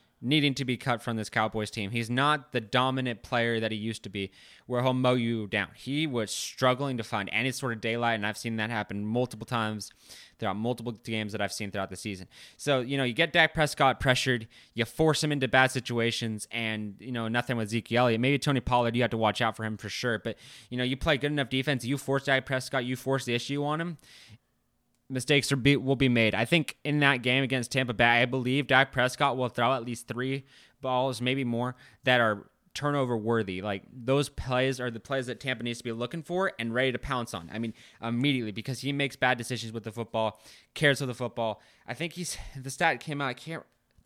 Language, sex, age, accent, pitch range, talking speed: English, male, 20-39, American, 115-135 Hz, 230 wpm